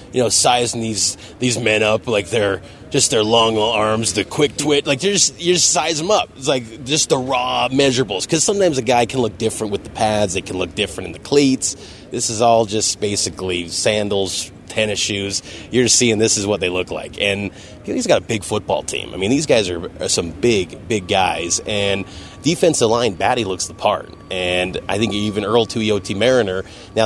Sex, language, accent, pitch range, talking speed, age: male, English, American, 95-120 Hz, 210 wpm, 30-49